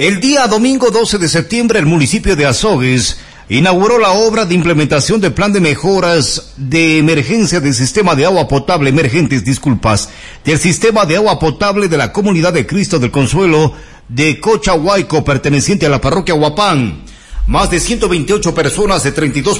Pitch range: 145-205 Hz